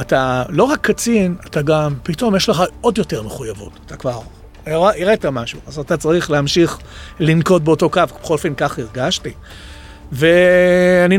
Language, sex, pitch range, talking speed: Hebrew, male, 140-180 Hz, 155 wpm